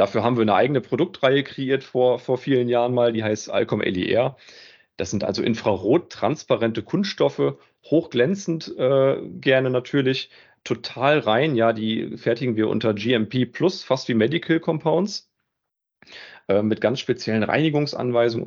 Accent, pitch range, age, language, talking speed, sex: German, 100-130 Hz, 40-59, German, 140 wpm, male